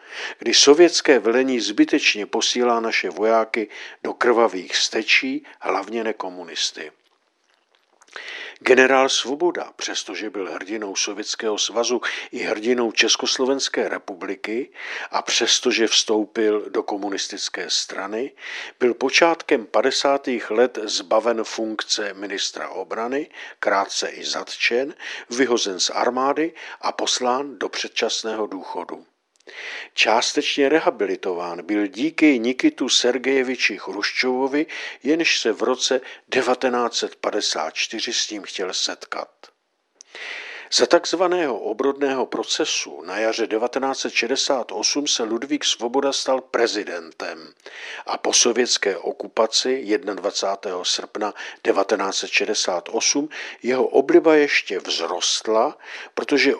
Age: 50-69